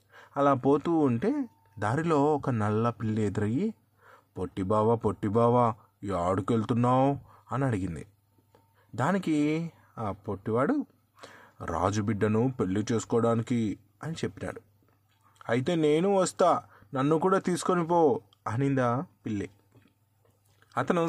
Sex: male